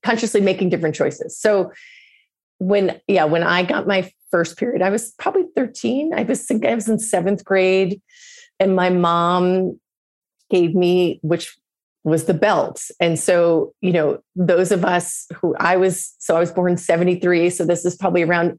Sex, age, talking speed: female, 30-49, 170 wpm